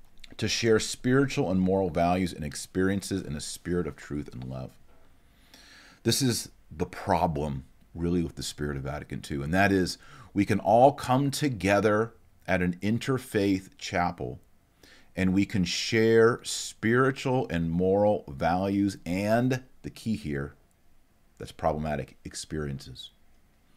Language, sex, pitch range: English, male, 80-110 Hz